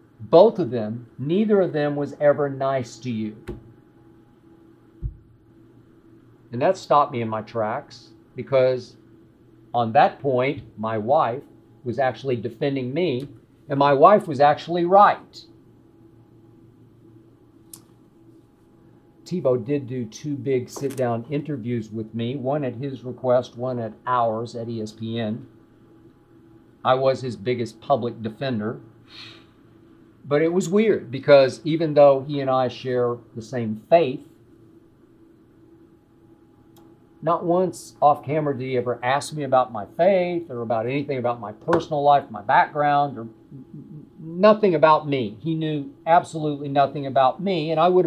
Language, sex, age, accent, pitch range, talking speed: English, male, 50-69, American, 115-145 Hz, 130 wpm